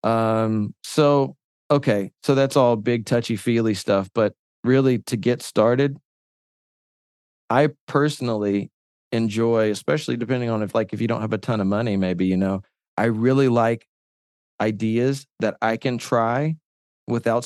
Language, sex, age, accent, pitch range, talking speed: English, male, 30-49, American, 105-125 Hz, 150 wpm